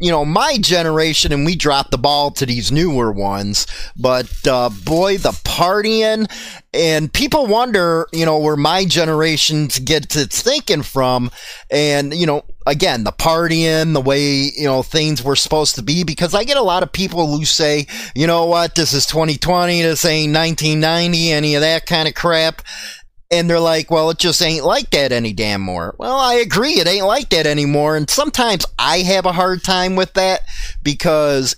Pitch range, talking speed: 135-175 Hz, 190 wpm